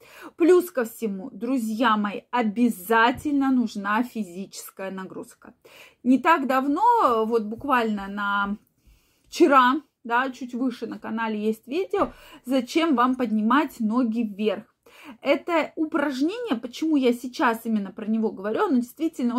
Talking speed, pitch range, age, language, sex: 120 wpm, 220-285 Hz, 20-39, Russian, female